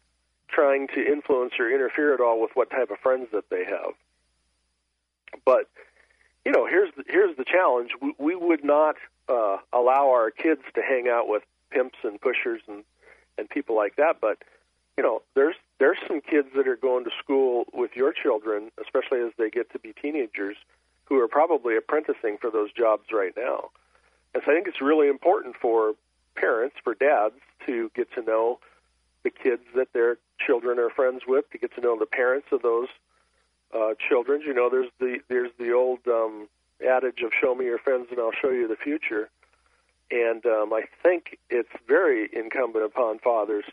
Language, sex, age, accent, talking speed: English, male, 40-59, American, 185 wpm